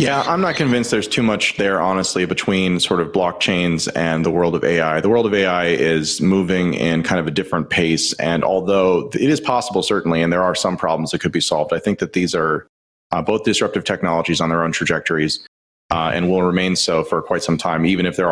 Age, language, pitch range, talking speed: 30-49, English, 85-120 Hz, 230 wpm